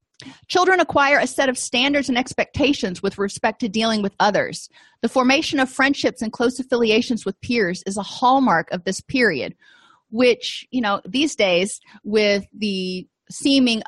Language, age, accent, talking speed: English, 30-49, American, 160 wpm